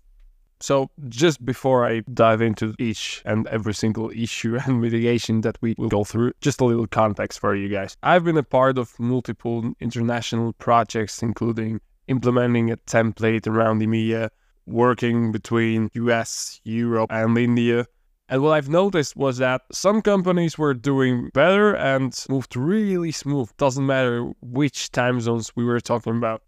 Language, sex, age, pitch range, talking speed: English, male, 10-29, 110-130 Hz, 155 wpm